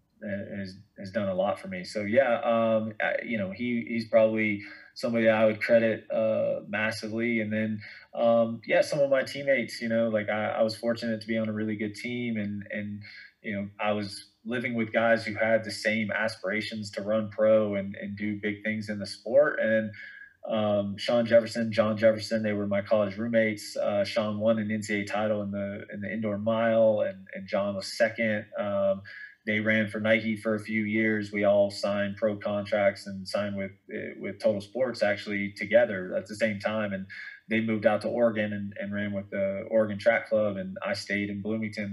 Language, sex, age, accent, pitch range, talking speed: English, male, 20-39, American, 105-120 Hz, 205 wpm